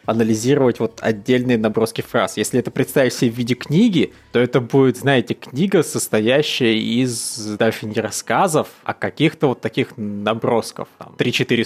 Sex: male